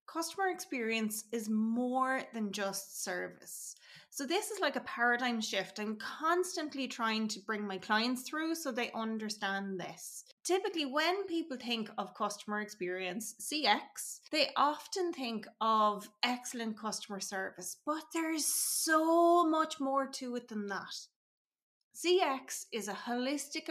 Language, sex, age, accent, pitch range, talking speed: English, female, 30-49, Irish, 215-300 Hz, 135 wpm